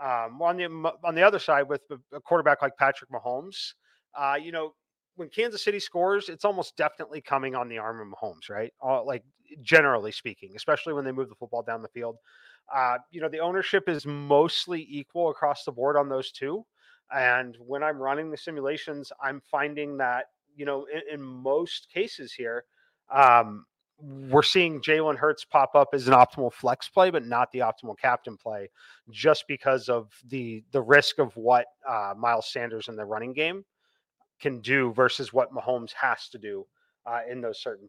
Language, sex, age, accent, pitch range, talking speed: English, male, 30-49, American, 125-165 Hz, 185 wpm